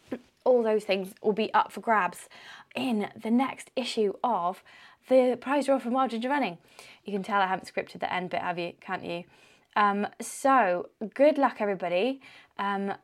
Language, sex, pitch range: English, female, 200-260 Hz